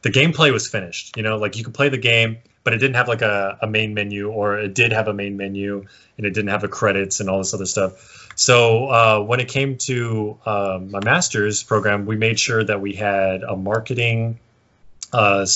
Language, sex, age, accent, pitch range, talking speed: English, male, 20-39, American, 100-115 Hz, 225 wpm